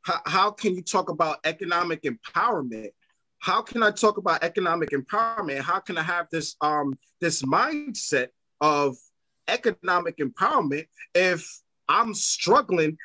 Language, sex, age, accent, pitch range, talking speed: English, male, 30-49, American, 150-200 Hz, 130 wpm